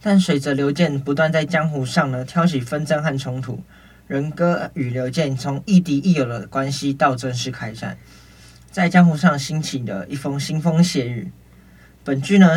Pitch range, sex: 130-165 Hz, male